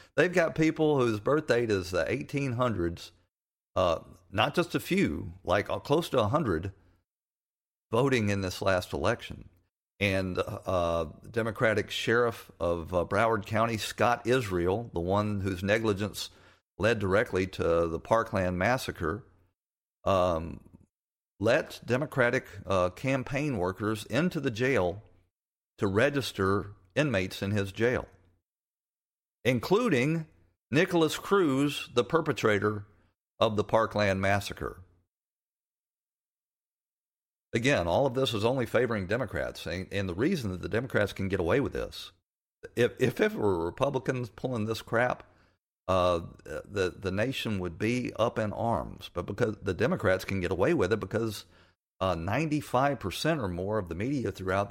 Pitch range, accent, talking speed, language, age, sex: 90-120 Hz, American, 135 wpm, English, 50-69, male